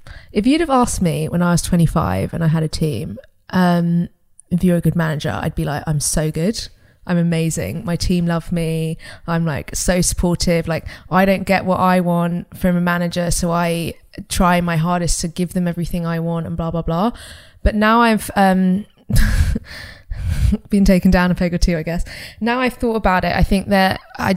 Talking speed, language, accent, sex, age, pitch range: 205 wpm, English, British, female, 20-39, 165-195 Hz